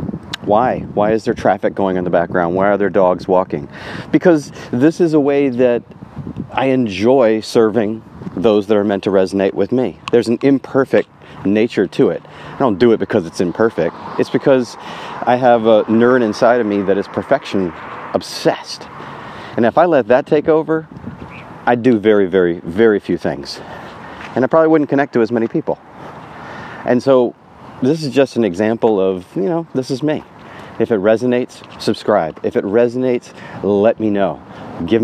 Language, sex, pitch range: English, male, 105-130 Hz